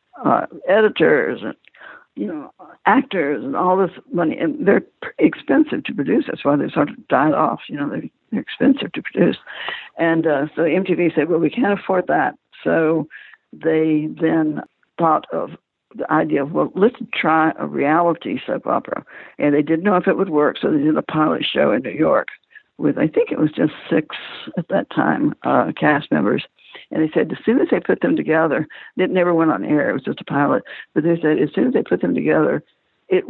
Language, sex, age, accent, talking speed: English, female, 60-79, American, 205 wpm